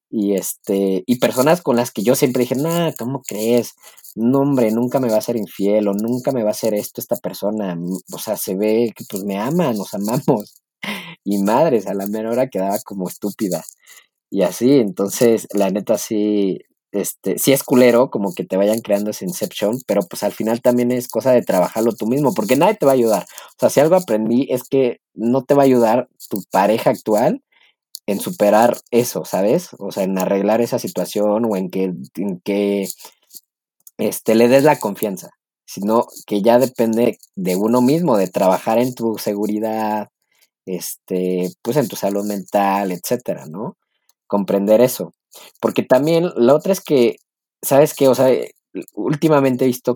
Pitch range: 100-130 Hz